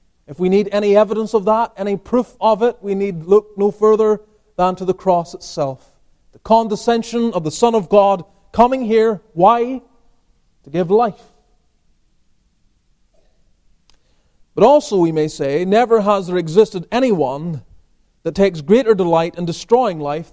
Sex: male